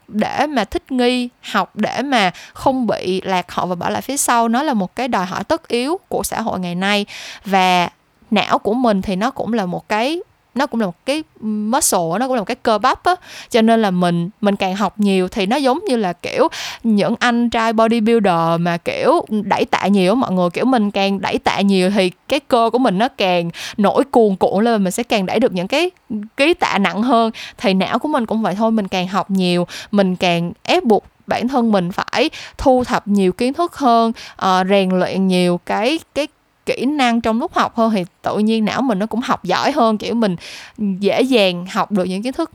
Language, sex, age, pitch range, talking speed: Vietnamese, female, 20-39, 190-250 Hz, 225 wpm